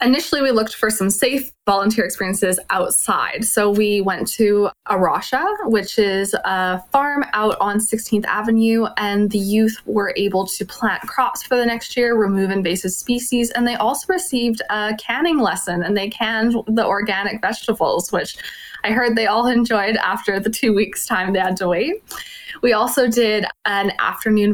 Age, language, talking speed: 20-39, English, 170 wpm